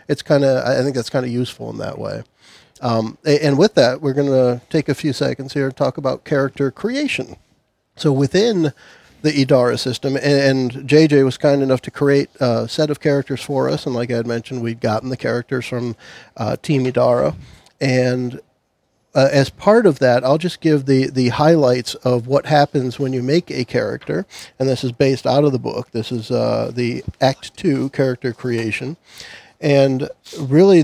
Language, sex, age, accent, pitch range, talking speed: English, male, 40-59, American, 125-150 Hz, 190 wpm